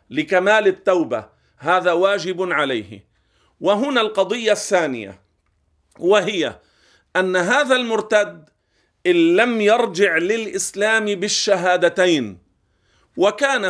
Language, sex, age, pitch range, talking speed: Arabic, male, 50-69, 170-220 Hz, 80 wpm